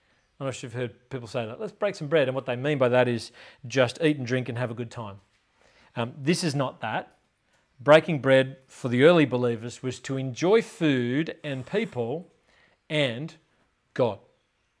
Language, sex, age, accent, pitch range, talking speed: English, male, 40-59, Australian, 125-150 Hz, 185 wpm